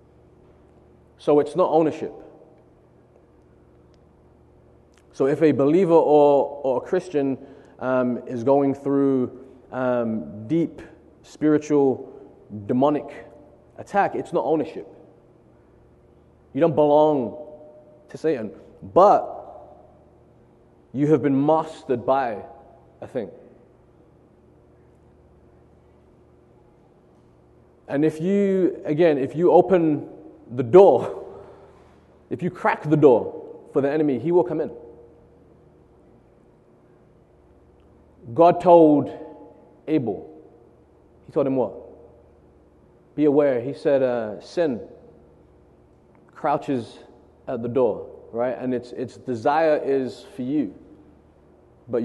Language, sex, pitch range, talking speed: English, male, 105-155 Hz, 95 wpm